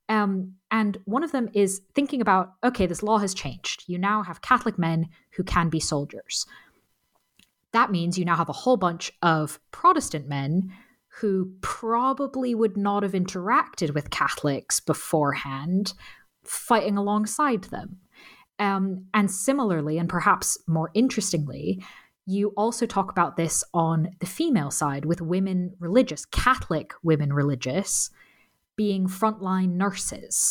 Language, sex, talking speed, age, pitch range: English, female, 140 wpm, 20-39, 160-210 Hz